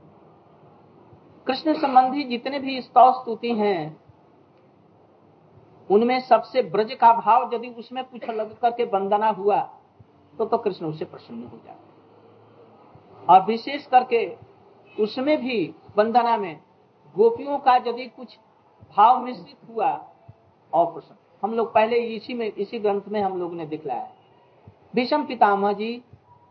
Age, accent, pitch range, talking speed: 50-69, native, 195-250 Hz, 130 wpm